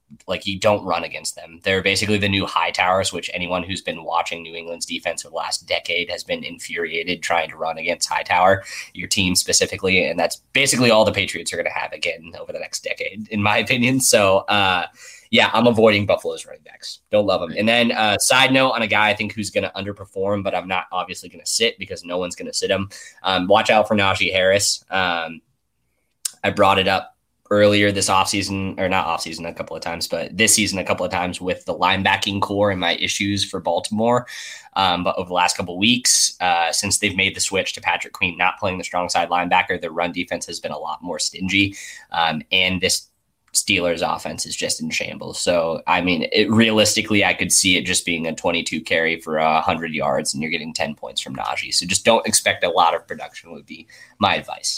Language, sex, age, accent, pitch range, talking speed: English, male, 10-29, American, 90-110 Hz, 225 wpm